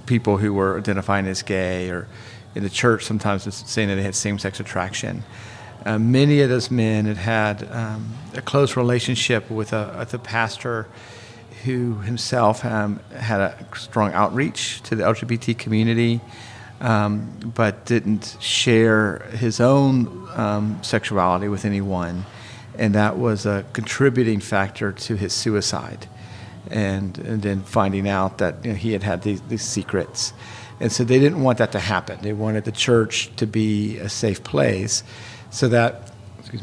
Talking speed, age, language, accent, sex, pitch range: 155 wpm, 40-59, English, American, male, 105-120 Hz